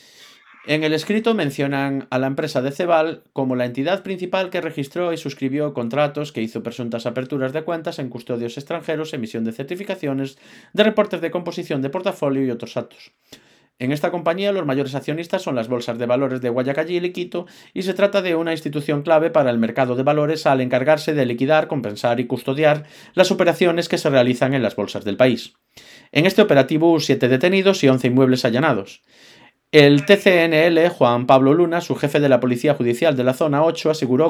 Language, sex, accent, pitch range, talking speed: Spanish, male, Spanish, 130-165 Hz, 190 wpm